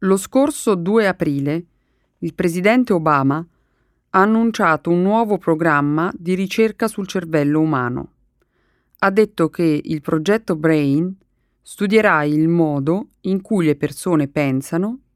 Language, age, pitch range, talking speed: Italian, 40-59, 150-210 Hz, 125 wpm